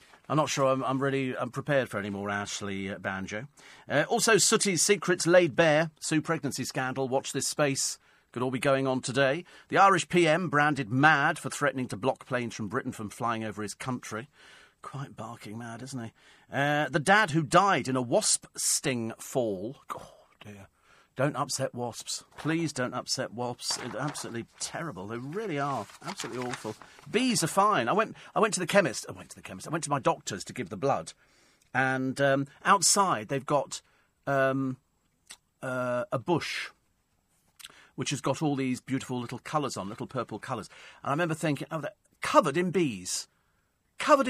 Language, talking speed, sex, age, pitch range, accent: English, 180 wpm, male, 40-59, 120-170 Hz, British